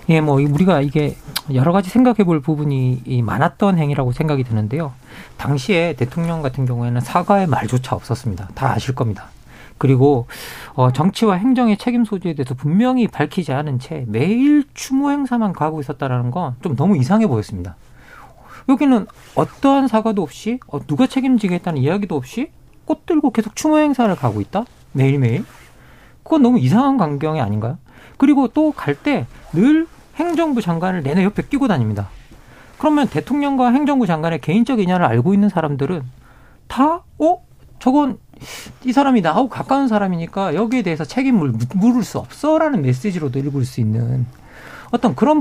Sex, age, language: male, 40-59, Korean